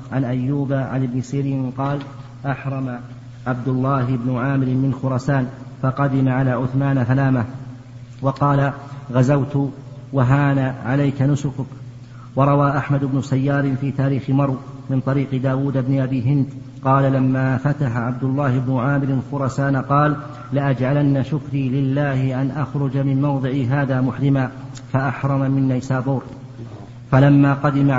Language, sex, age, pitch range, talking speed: Arabic, male, 50-69, 130-140 Hz, 125 wpm